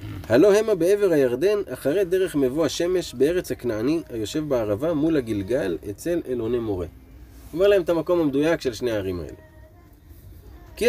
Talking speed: 150 wpm